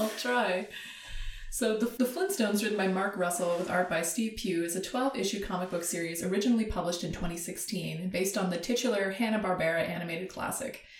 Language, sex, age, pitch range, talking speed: English, female, 20-39, 175-215 Hz, 180 wpm